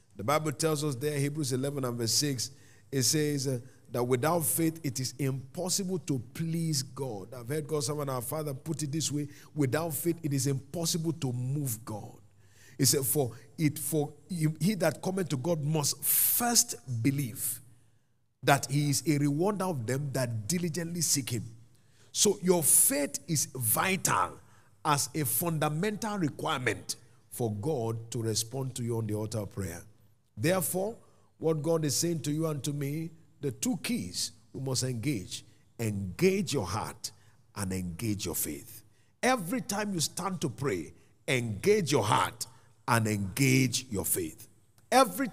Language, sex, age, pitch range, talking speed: English, male, 50-69, 115-160 Hz, 160 wpm